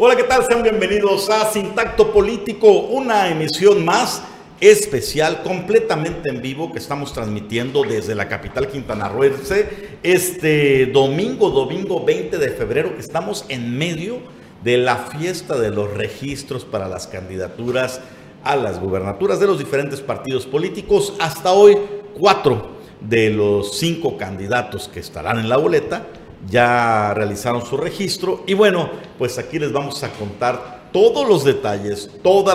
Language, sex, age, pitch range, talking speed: Spanish, male, 50-69, 120-195 Hz, 140 wpm